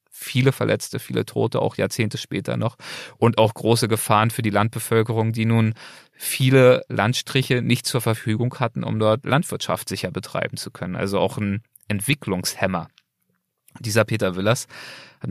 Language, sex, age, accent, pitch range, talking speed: German, male, 30-49, German, 105-130 Hz, 150 wpm